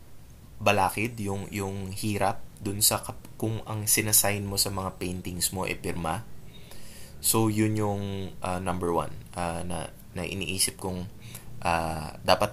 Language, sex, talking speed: Filipino, male, 150 wpm